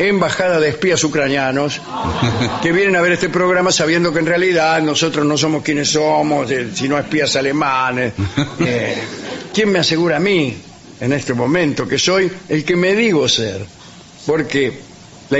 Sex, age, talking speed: male, 50-69, 155 wpm